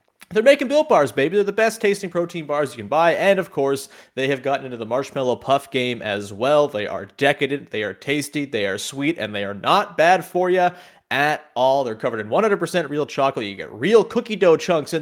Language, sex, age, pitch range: English, male, 30-49, 120-170 Hz